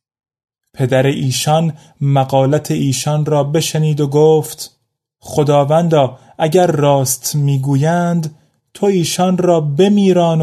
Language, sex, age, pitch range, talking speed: Persian, male, 30-49, 125-155 Hz, 90 wpm